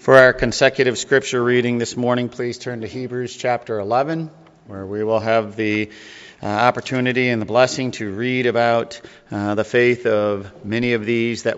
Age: 50-69